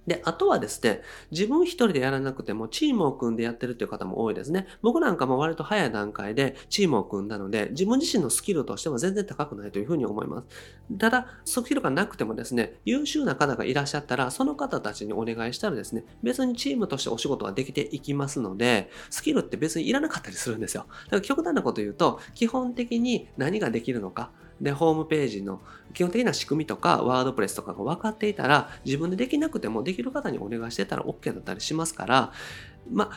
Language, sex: Japanese, male